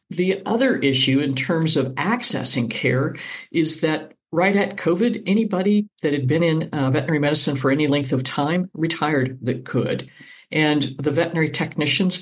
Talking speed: 160 wpm